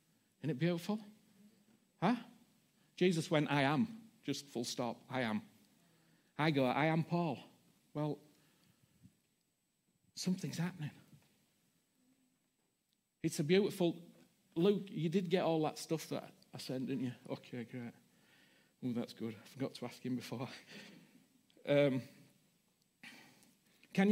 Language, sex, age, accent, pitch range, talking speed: English, male, 50-69, British, 145-200 Hz, 120 wpm